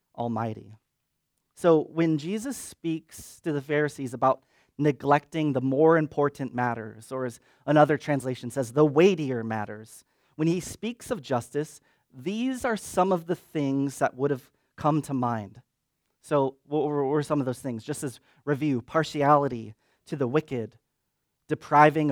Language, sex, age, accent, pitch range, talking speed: English, male, 30-49, American, 125-150 Hz, 145 wpm